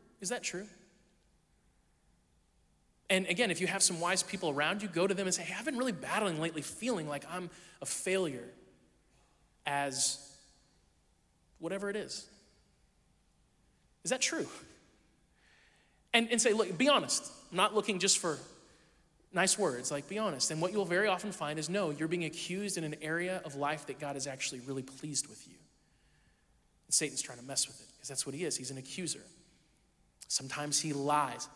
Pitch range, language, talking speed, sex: 145-190 Hz, English, 175 wpm, male